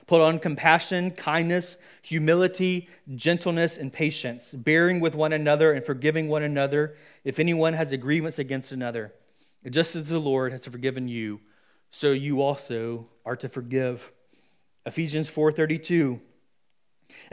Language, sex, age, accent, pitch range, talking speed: English, male, 30-49, American, 130-165 Hz, 130 wpm